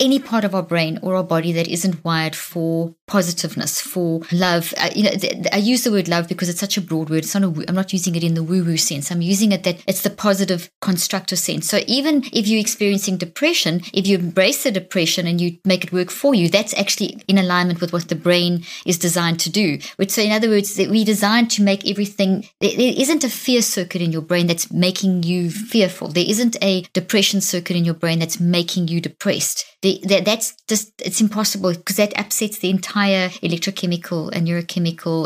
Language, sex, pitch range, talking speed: English, female, 170-200 Hz, 215 wpm